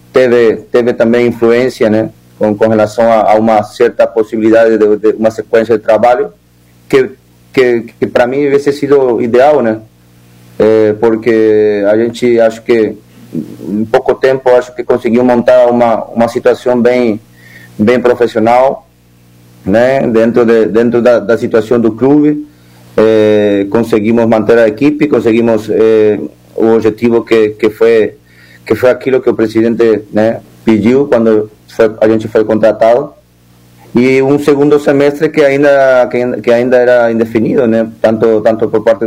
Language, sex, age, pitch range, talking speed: Portuguese, male, 30-49, 105-125 Hz, 145 wpm